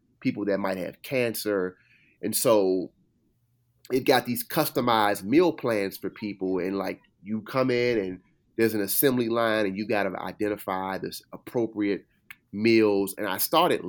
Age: 30-49